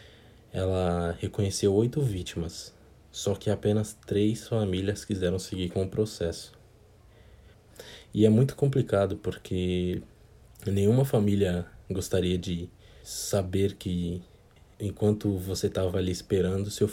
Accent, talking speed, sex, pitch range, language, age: Brazilian, 110 wpm, male, 90-110 Hz, Portuguese, 20-39